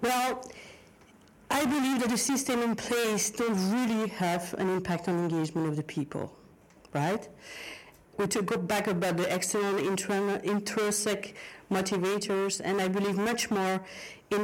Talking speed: 150 wpm